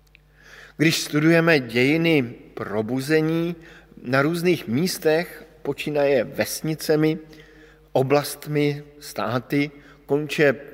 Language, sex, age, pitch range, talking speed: Slovak, male, 50-69, 135-155 Hz, 65 wpm